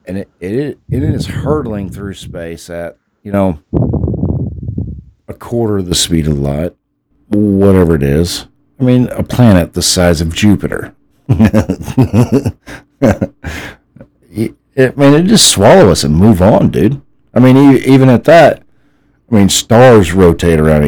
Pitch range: 85-115 Hz